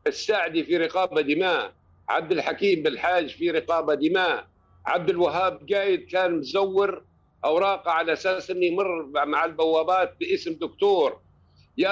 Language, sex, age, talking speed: Arabic, male, 60-79, 125 wpm